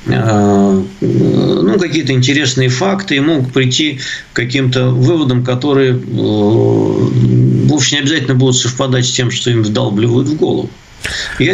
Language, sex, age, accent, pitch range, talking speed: Russian, male, 50-69, native, 110-150 Hz, 125 wpm